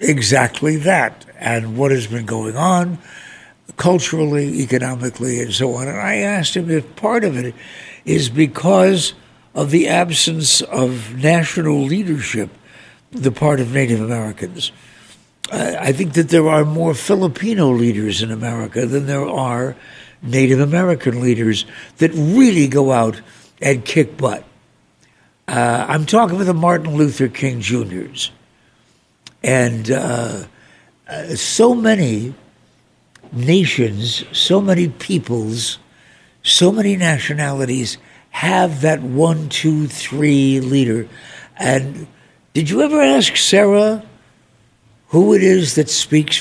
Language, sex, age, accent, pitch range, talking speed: English, male, 60-79, American, 120-165 Hz, 120 wpm